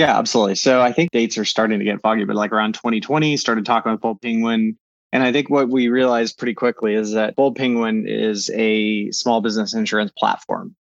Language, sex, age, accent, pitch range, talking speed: English, male, 20-39, American, 110-130 Hz, 210 wpm